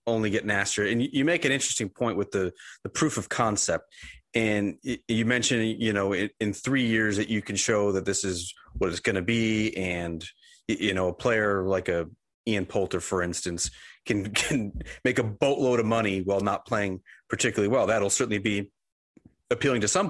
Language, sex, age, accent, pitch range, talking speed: English, male, 30-49, American, 100-160 Hz, 195 wpm